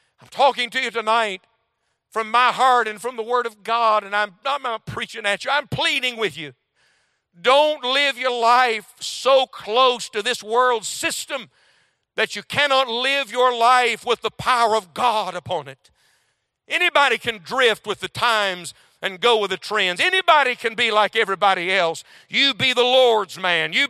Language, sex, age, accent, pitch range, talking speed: English, male, 60-79, American, 160-235 Hz, 180 wpm